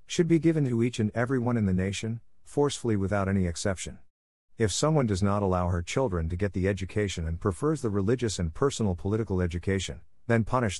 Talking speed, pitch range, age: 200 wpm, 90-115 Hz, 50-69